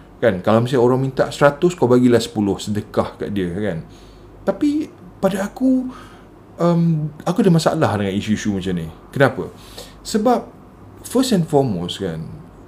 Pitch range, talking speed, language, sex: 105-160 Hz, 140 wpm, Malay, male